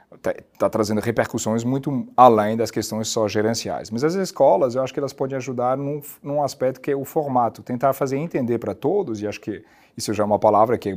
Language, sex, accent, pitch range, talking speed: Portuguese, male, Brazilian, 110-145 Hz, 225 wpm